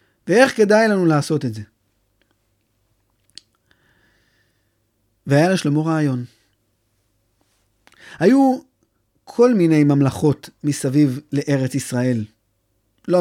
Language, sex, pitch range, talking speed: Hebrew, male, 115-170 Hz, 75 wpm